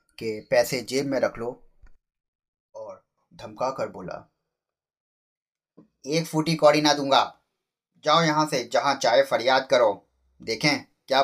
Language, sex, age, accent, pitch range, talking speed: Hindi, male, 30-49, native, 105-130 Hz, 115 wpm